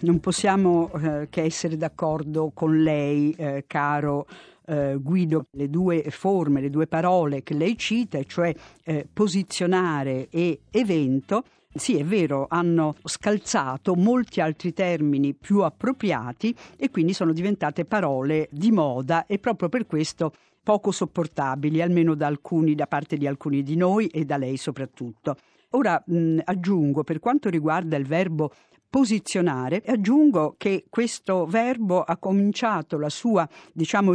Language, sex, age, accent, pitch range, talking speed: Italian, female, 50-69, native, 150-200 Hz, 140 wpm